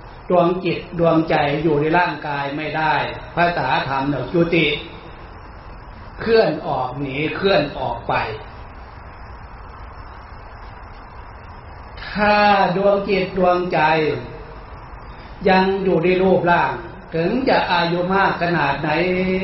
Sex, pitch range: male, 130-175 Hz